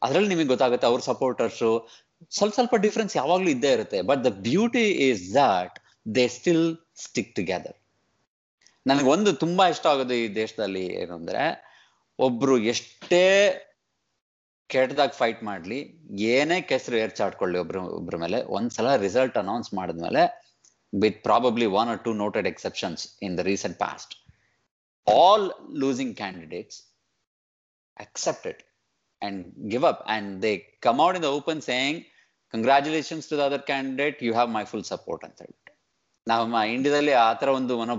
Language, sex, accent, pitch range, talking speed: Kannada, male, native, 110-145 Hz, 145 wpm